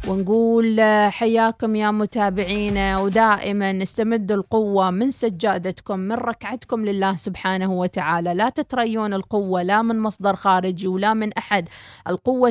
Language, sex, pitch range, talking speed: Arabic, female, 195-240 Hz, 120 wpm